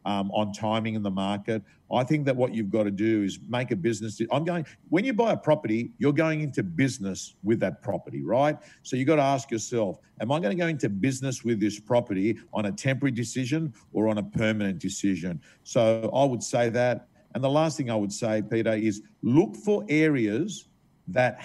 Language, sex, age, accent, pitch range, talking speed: English, male, 50-69, Australian, 115-155 Hz, 215 wpm